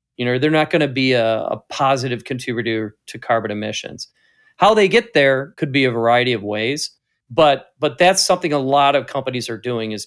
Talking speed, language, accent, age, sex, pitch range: 210 wpm, English, American, 40-59, male, 125-160 Hz